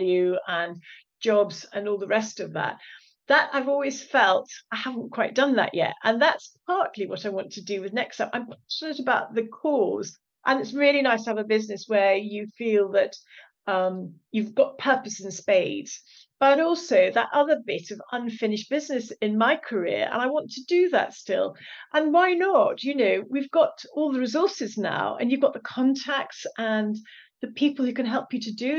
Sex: female